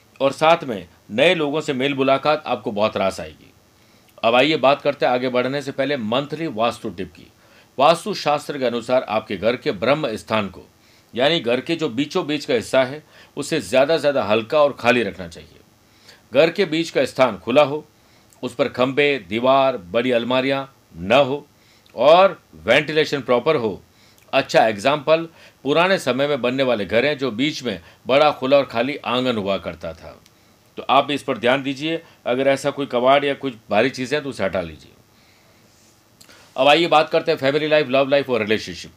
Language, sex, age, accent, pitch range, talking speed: Hindi, male, 50-69, native, 115-150 Hz, 185 wpm